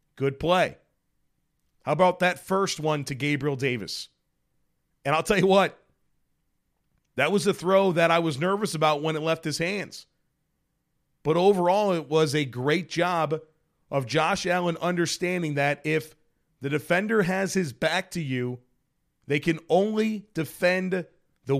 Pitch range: 150-180 Hz